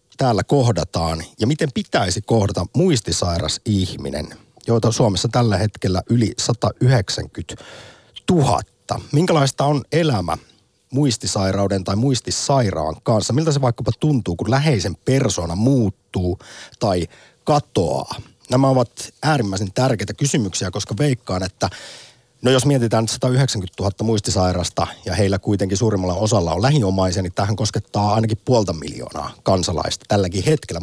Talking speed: 120 wpm